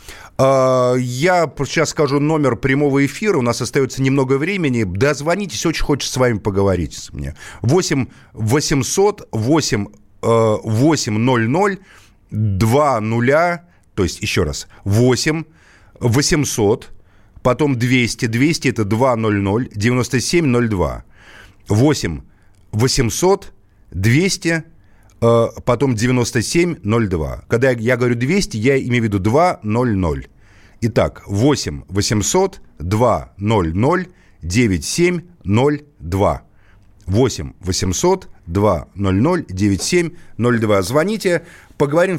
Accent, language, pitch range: native, Russian, 105-145 Hz